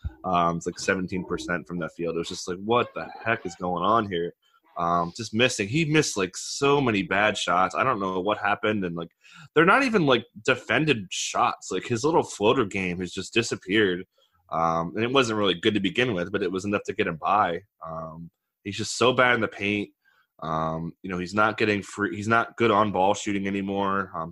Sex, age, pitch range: male, 20-39, 85-110 Hz